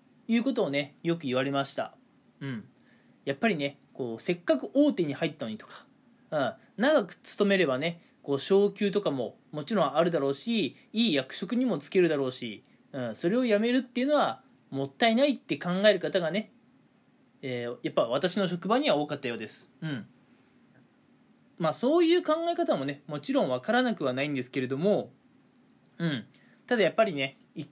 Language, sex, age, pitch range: Japanese, male, 20-39, 150-245 Hz